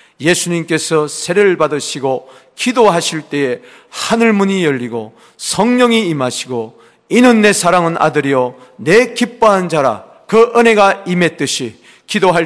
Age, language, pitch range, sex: 40-59, Korean, 155-205 Hz, male